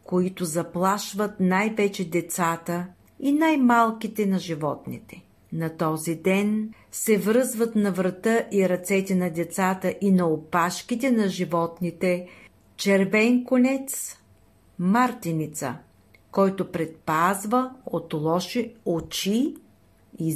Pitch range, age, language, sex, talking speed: 170-225 Hz, 40-59, Bulgarian, female, 95 wpm